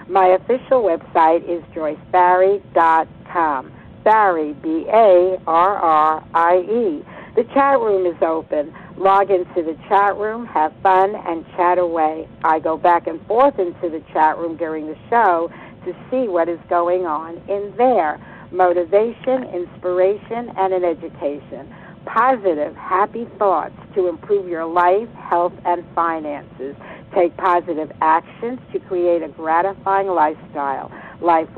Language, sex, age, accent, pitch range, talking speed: English, female, 60-79, American, 165-200 Hz, 125 wpm